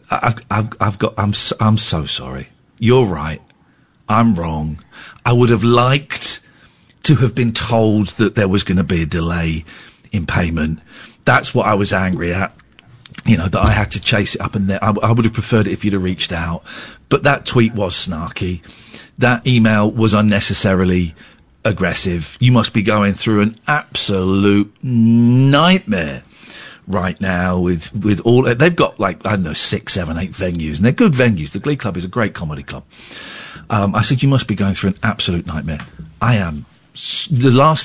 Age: 40-59